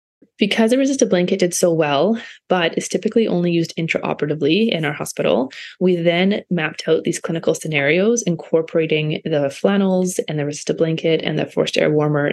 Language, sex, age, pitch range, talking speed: English, female, 20-39, 155-180 Hz, 170 wpm